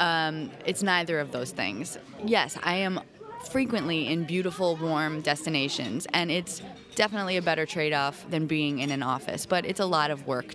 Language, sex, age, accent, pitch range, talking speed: English, female, 20-39, American, 145-180 Hz, 175 wpm